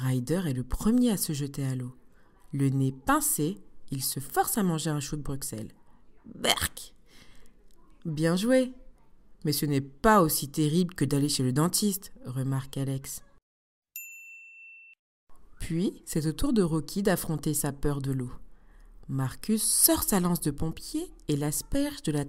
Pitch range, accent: 140-230 Hz, French